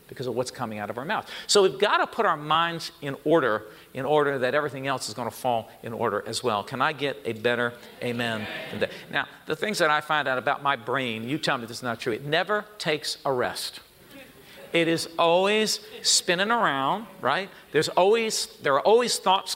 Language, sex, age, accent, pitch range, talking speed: English, male, 50-69, American, 130-185 Hz, 220 wpm